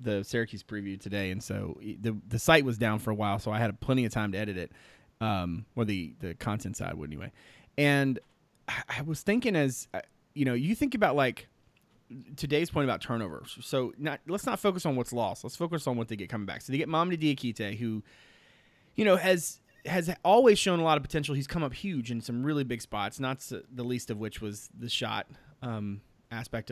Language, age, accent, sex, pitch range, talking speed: English, 30-49, American, male, 110-145 Hz, 220 wpm